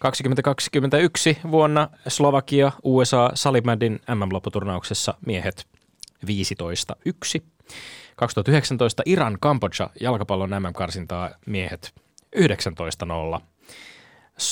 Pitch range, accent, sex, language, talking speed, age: 95-130 Hz, native, male, Finnish, 65 wpm, 20-39